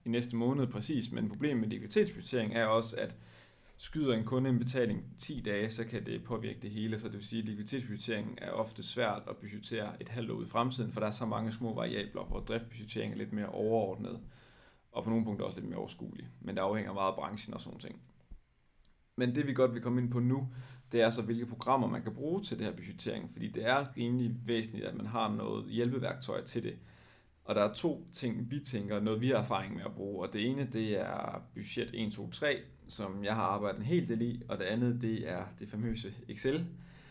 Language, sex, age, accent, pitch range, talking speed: Danish, male, 30-49, native, 105-125 Hz, 225 wpm